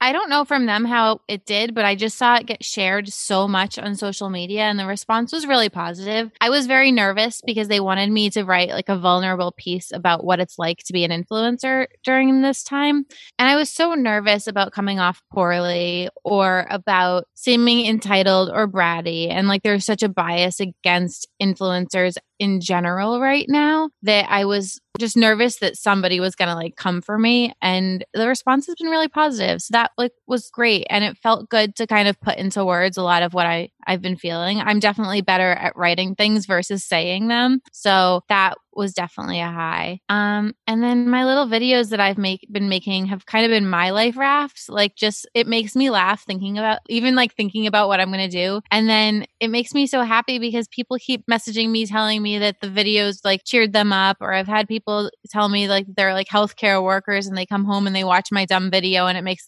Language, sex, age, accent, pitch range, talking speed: English, female, 20-39, American, 185-230 Hz, 220 wpm